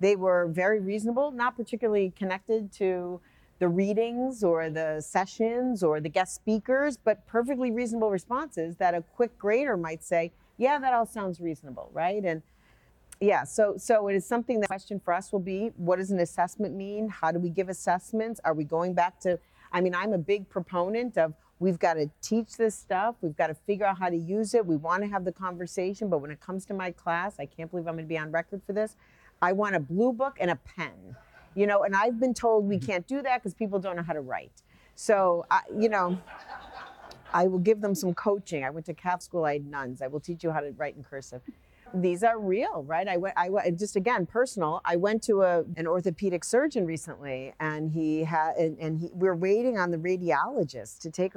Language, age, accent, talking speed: English, 40-59, American, 225 wpm